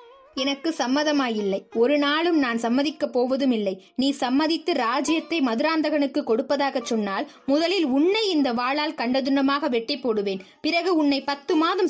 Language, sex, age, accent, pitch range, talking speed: Tamil, female, 20-39, native, 255-320 Hz, 125 wpm